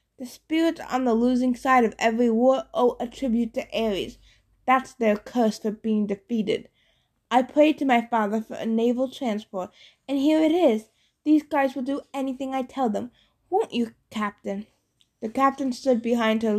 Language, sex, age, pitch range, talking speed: English, female, 20-39, 220-270 Hz, 175 wpm